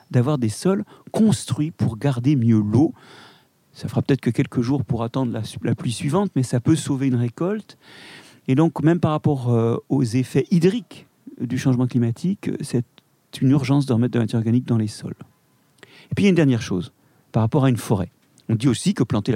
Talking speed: 210 wpm